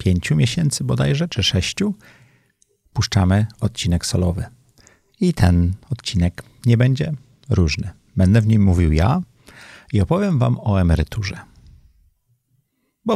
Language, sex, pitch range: Polish, male, 95-120 Hz